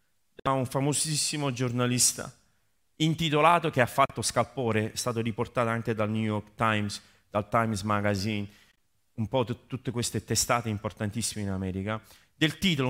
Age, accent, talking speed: 30-49, native, 145 wpm